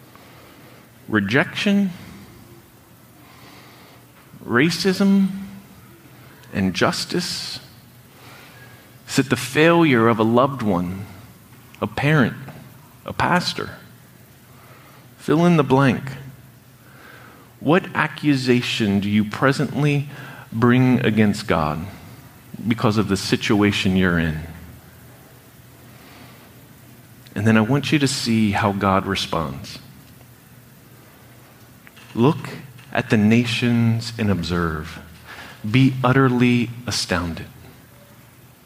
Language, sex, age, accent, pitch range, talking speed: English, male, 40-59, American, 110-135 Hz, 80 wpm